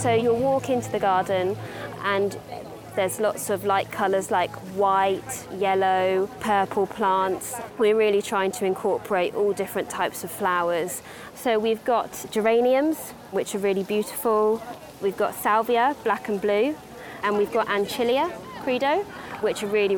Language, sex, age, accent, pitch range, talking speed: English, female, 20-39, British, 190-215 Hz, 145 wpm